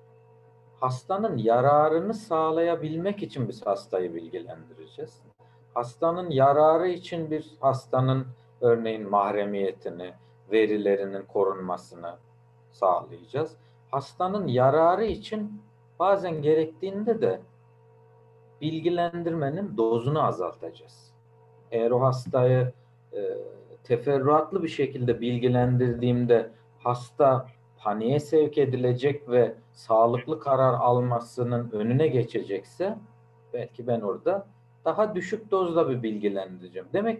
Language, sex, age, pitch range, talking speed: Turkish, male, 50-69, 115-165 Hz, 85 wpm